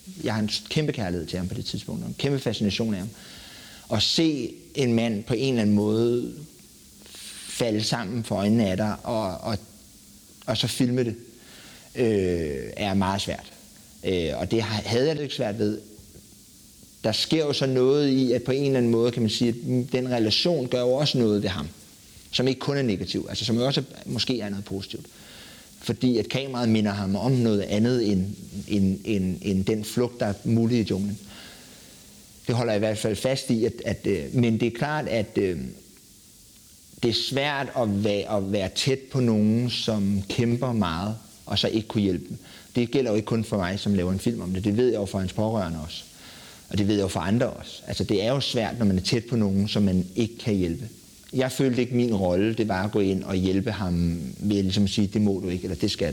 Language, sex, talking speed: Danish, male, 220 wpm